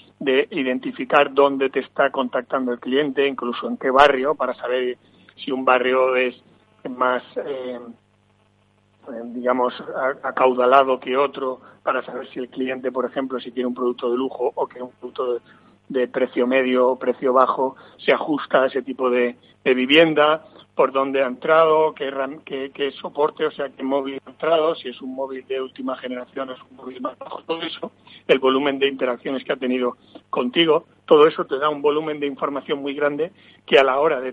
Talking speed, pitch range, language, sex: 185 wpm, 125-140 Hz, Spanish, male